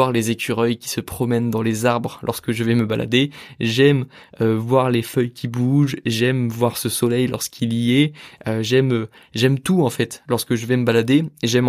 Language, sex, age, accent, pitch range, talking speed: French, male, 20-39, French, 115-140 Hz, 190 wpm